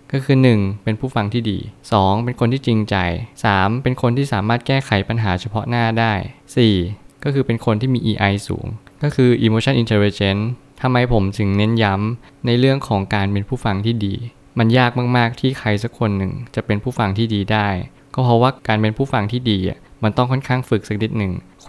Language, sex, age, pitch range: Thai, male, 20-39, 105-125 Hz